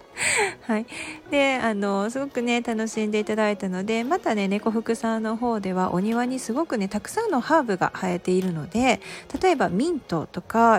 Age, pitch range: 40-59, 180-250 Hz